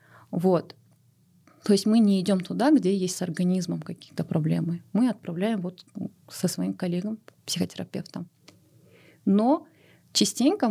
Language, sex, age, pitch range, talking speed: Russian, female, 30-49, 175-220 Hz, 125 wpm